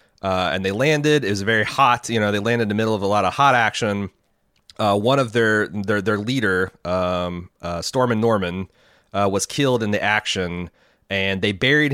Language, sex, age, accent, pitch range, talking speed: English, male, 30-49, American, 95-115 Hz, 205 wpm